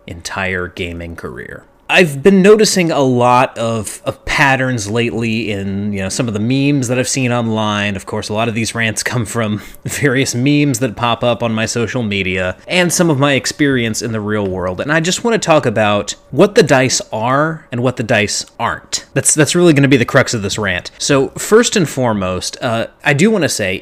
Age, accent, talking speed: 30-49, American, 220 wpm